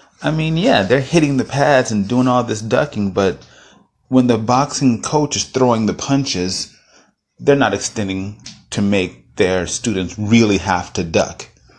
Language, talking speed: English, 165 wpm